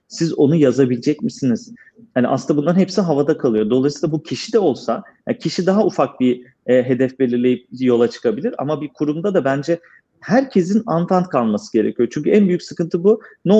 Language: Turkish